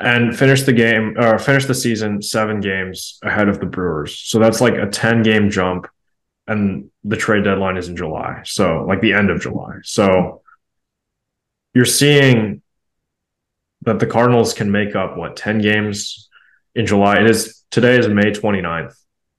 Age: 20-39